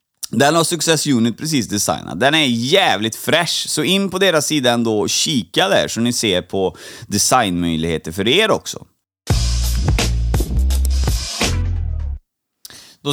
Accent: native